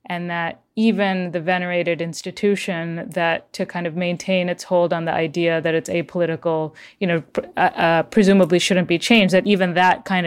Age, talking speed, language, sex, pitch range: 30-49, 180 wpm, English, female, 170-195 Hz